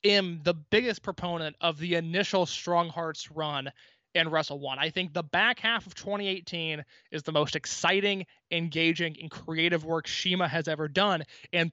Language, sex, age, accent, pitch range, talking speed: English, male, 20-39, American, 165-215 Hz, 170 wpm